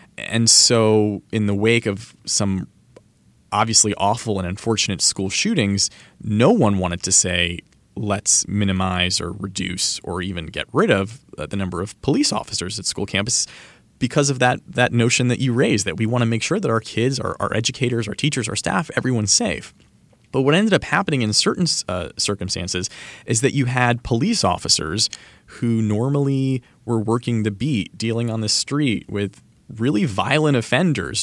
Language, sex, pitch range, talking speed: English, male, 100-125 Hz, 175 wpm